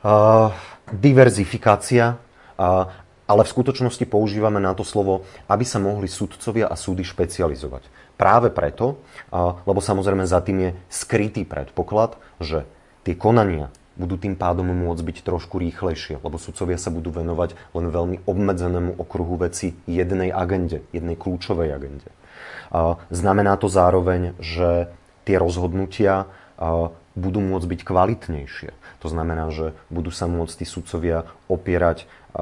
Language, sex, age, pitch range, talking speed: Slovak, male, 30-49, 85-95 Hz, 135 wpm